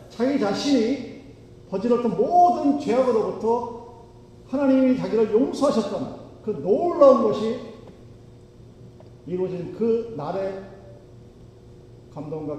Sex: male